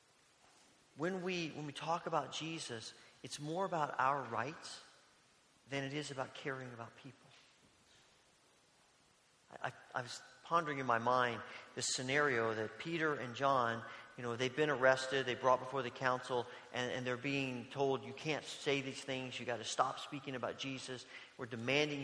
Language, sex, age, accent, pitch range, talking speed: English, male, 40-59, American, 125-160 Hz, 165 wpm